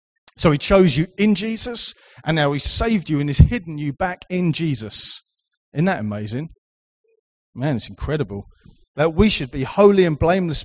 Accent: British